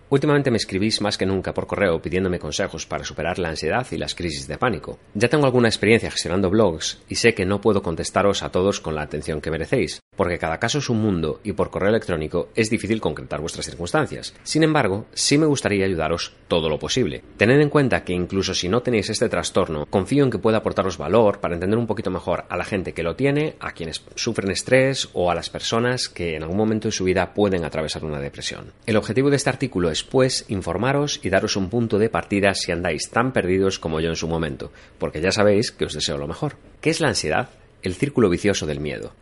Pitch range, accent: 85-115 Hz, Spanish